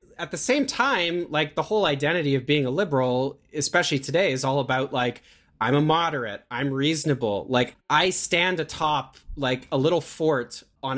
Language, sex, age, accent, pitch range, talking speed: English, male, 30-49, American, 130-160 Hz, 175 wpm